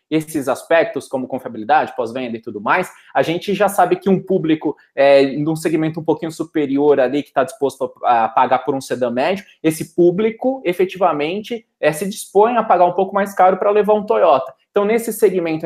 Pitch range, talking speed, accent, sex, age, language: 150-215 Hz, 185 wpm, Brazilian, male, 20-39, Portuguese